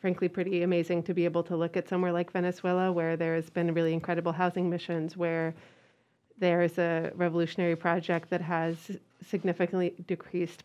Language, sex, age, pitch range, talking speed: English, female, 30-49, 170-185 Hz, 170 wpm